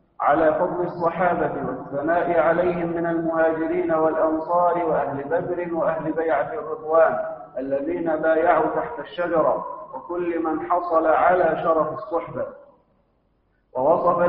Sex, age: male, 50-69